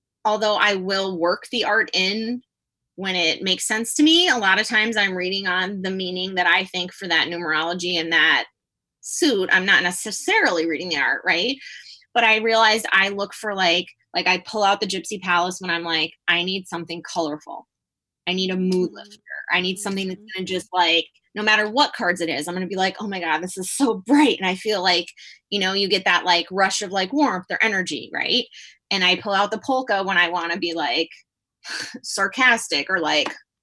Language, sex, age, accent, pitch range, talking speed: English, female, 20-39, American, 175-210 Hz, 220 wpm